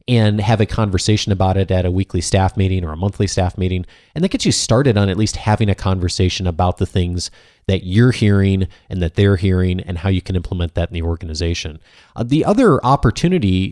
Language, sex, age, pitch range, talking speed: English, male, 30-49, 95-120 Hz, 220 wpm